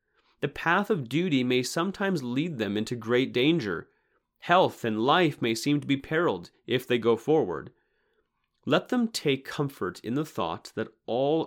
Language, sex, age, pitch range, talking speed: English, male, 30-49, 115-155 Hz, 165 wpm